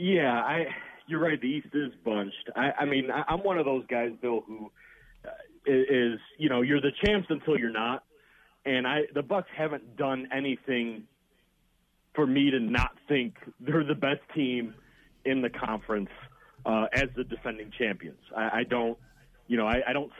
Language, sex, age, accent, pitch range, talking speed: English, male, 40-59, American, 120-160 Hz, 175 wpm